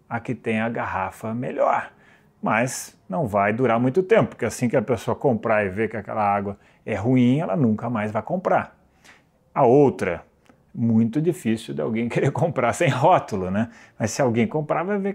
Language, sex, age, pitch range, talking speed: Portuguese, male, 30-49, 115-175 Hz, 185 wpm